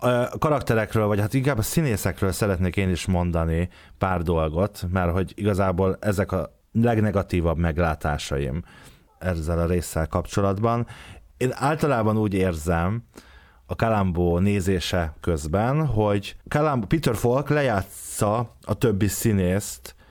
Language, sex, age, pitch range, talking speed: Hungarian, male, 30-49, 90-115 Hz, 120 wpm